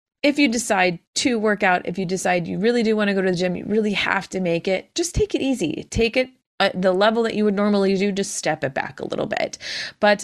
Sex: female